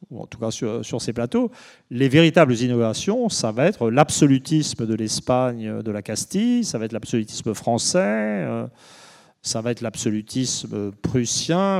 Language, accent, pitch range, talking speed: French, French, 125-175 Hz, 155 wpm